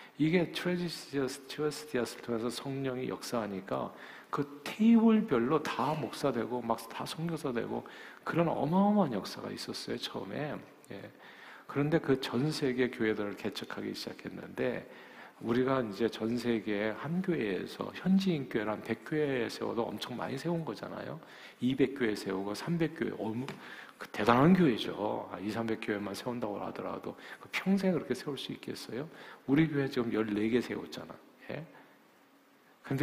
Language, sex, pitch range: Korean, male, 115-165 Hz